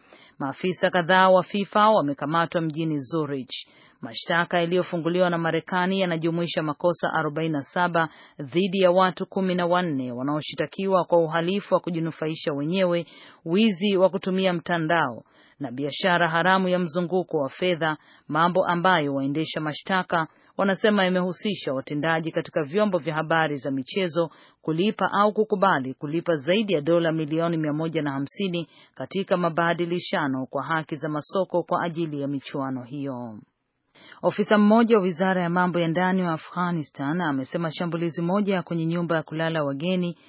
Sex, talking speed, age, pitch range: female, 130 wpm, 40-59, 155-180 Hz